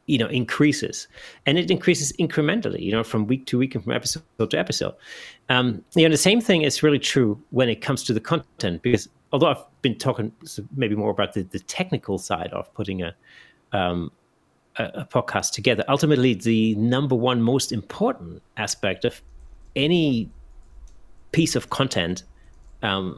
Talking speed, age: 170 wpm, 30-49